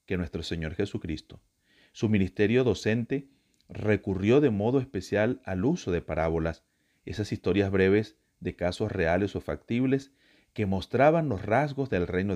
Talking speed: 140 wpm